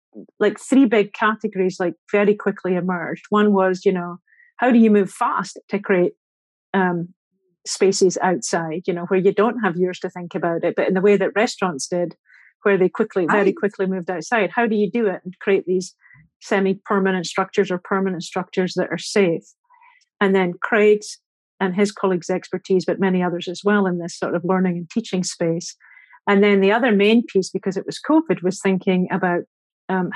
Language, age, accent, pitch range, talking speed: English, 40-59, British, 180-205 Hz, 195 wpm